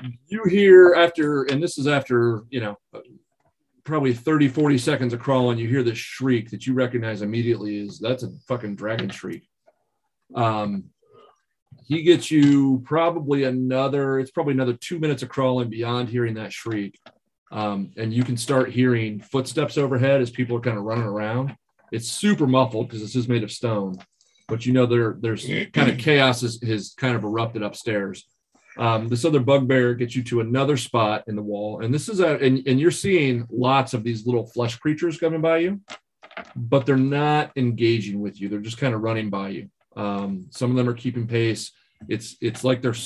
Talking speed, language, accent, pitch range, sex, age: 190 wpm, English, American, 115-140 Hz, male, 40-59